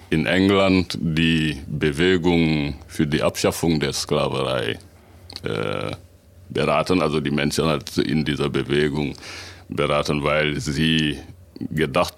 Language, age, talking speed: German, 60-79, 105 wpm